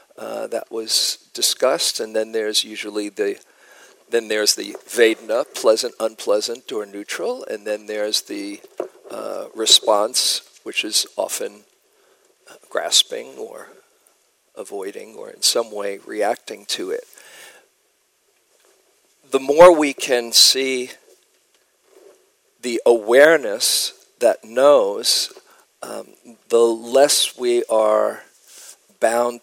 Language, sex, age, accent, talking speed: English, male, 50-69, American, 105 wpm